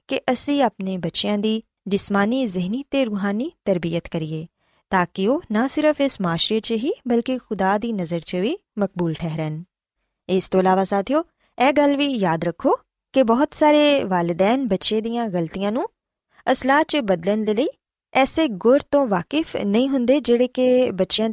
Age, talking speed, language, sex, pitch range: 20-39, 165 wpm, Punjabi, female, 185-260 Hz